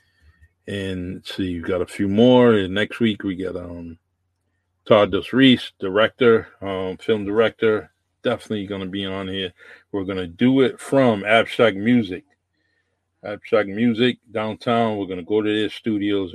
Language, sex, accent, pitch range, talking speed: English, male, American, 90-100 Hz, 160 wpm